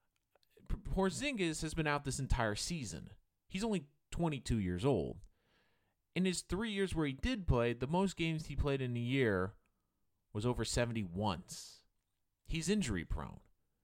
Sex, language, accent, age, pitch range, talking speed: male, English, American, 30-49, 105-155 Hz, 150 wpm